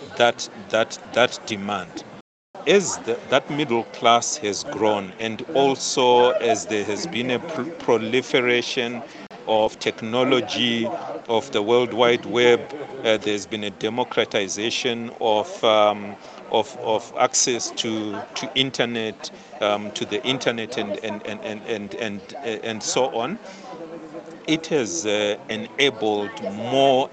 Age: 50-69